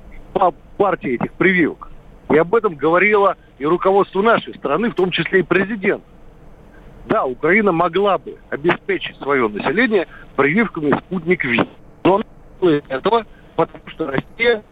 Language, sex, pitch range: Russian, male, 155-200 Hz